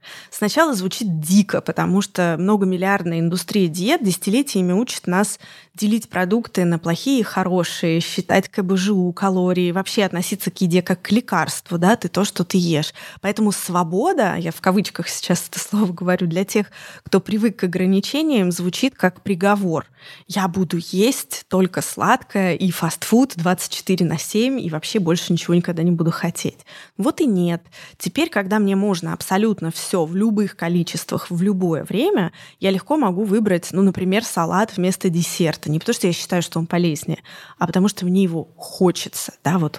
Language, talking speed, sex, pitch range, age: Russian, 165 wpm, female, 175-205 Hz, 20-39